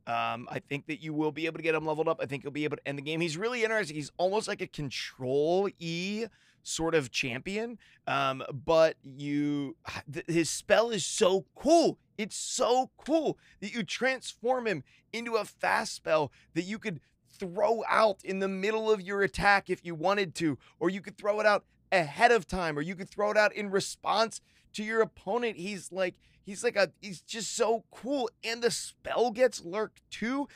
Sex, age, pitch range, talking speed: male, 30-49, 155-215 Hz, 205 wpm